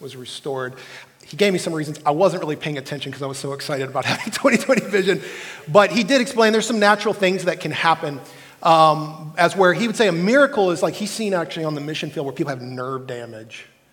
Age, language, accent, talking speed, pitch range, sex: 30-49, English, American, 235 wpm, 140-210 Hz, male